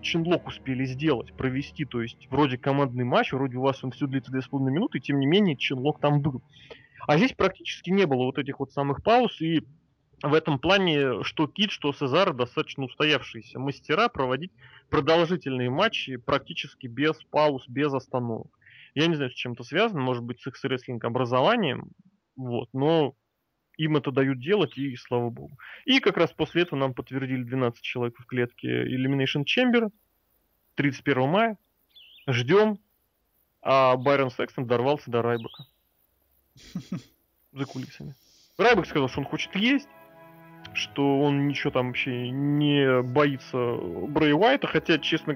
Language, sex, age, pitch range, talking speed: Russian, male, 20-39, 125-160 Hz, 155 wpm